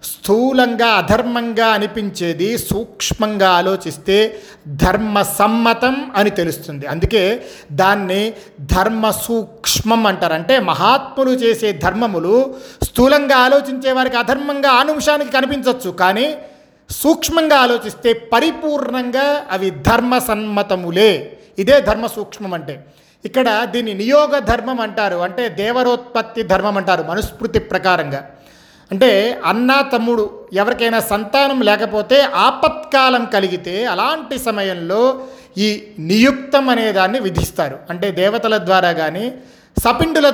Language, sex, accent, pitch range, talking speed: Telugu, male, native, 195-260 Hz, 95 wpm